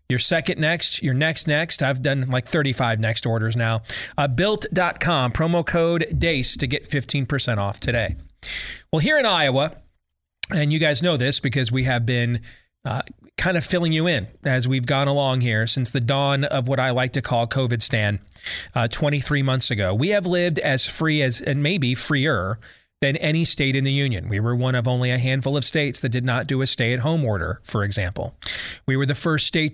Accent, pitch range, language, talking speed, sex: American, 120-150 Hz, English, 205 wpm, male